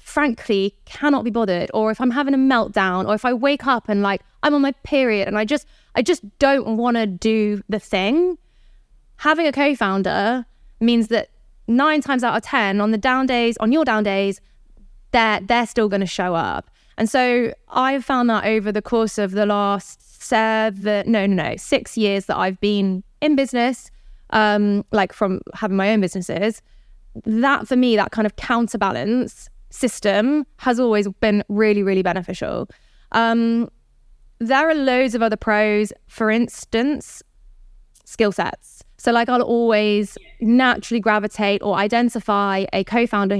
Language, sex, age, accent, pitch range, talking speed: English, female, 20-39, British, 205-245 Hz, 165 wpm